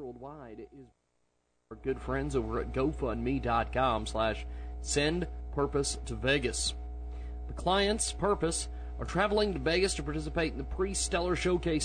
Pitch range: 110-155 Hz